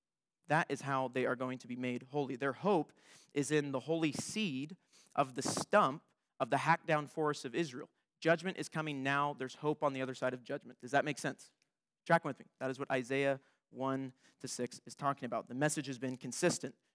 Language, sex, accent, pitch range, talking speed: English, male, American, 135-170 Hz, 215 wpm